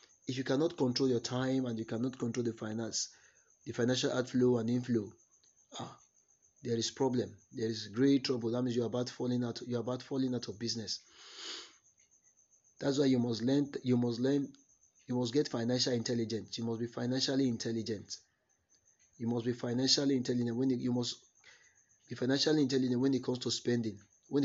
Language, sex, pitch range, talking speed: English, male, 115-130 Hz, 185 wpm